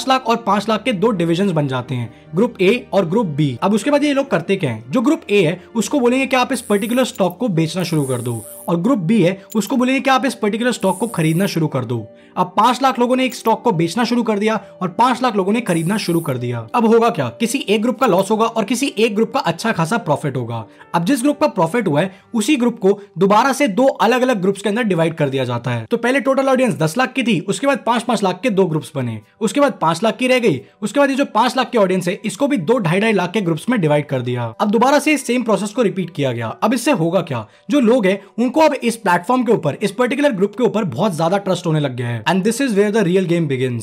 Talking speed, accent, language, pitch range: 185 wpm, Indian, English, 175-250 Hz